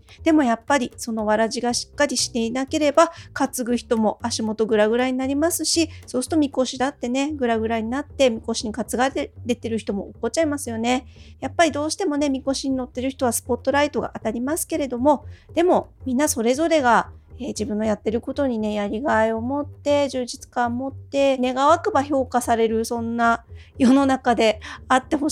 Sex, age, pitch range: female, 40-59, 235-305 Hz